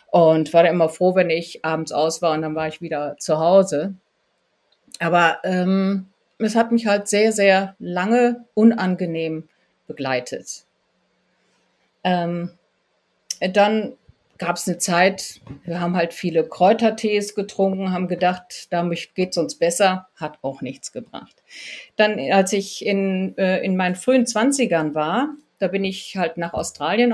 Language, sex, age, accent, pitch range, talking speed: German, female, 50-69, German, 170-215 Hz, 145 wpm